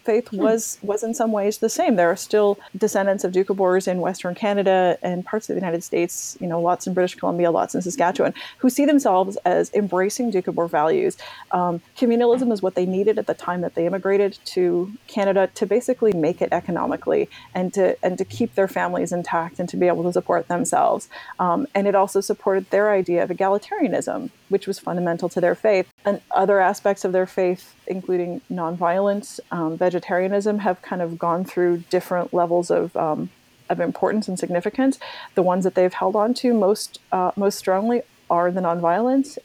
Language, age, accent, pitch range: English, 30-49, American, 180-210 Hz